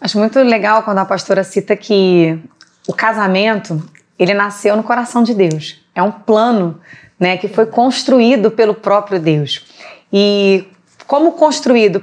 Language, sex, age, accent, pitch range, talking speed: Portuguese, female, 20-39, Brazilian, 195-240 Hz, 145 wpm